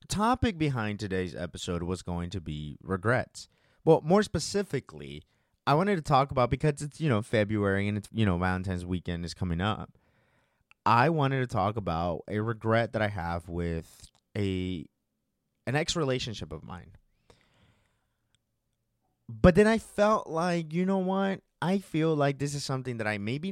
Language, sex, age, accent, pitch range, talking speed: English, male, 30-49, American, 100-145 Hz, 165 wpm